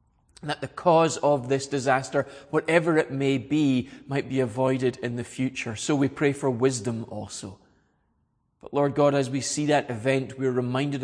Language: English